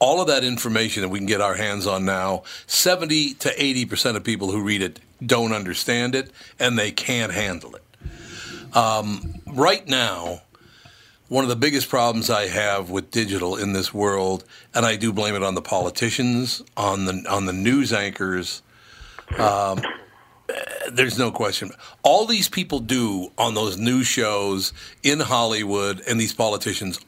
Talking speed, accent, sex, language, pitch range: 160 wpm, American, male, English, 100-130 Hz